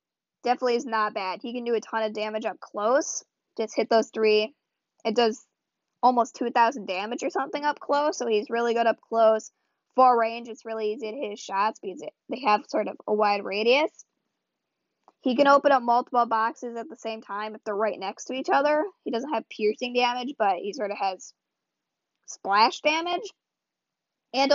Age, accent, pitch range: 20-39, American, 210-245 Hz